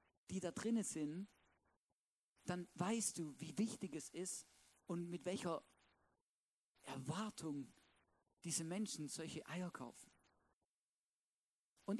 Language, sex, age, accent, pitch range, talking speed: German, male, 50-69, German, 170-240 Hz, 105 wpm